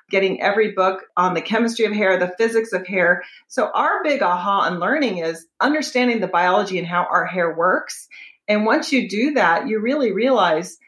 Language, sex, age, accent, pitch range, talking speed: English, female, 40-59, American, 180-250 Hz, 195 wpm